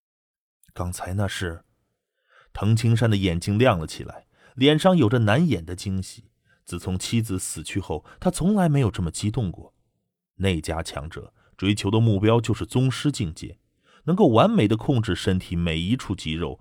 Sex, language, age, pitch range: male, Chinese, 30-49, 90-115 Hz